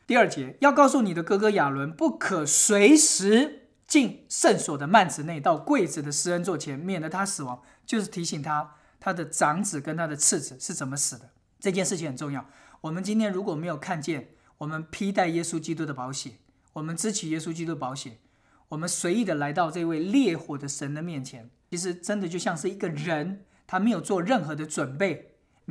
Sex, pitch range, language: male, 150-205 Hz, English